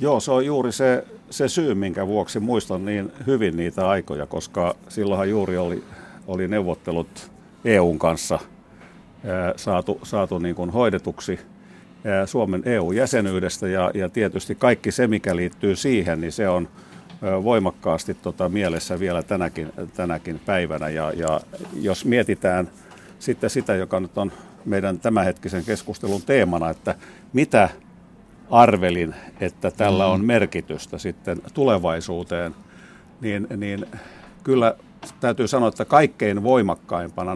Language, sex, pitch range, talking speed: Finnish, male, 85-105 Hz, 125 wpm